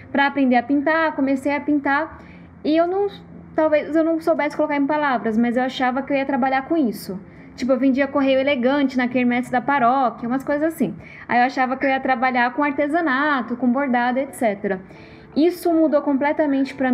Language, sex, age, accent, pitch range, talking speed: Portuguese, female, 10-29, Brazilian, 245-290 Hz, 190 wpm